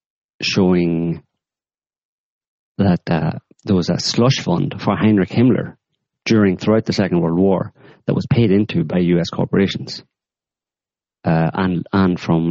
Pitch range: 85-115 Hz